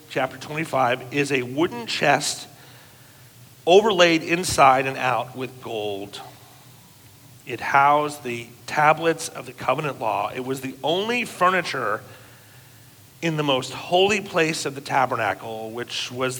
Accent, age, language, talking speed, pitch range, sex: American, 40-59, English, 130 wpm, 120-150 Hz, male